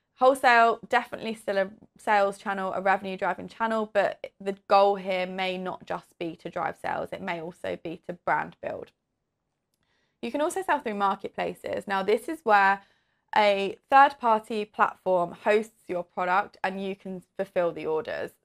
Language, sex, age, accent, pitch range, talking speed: English, female, 20-39, British, 185-215 Hz, 165 wpm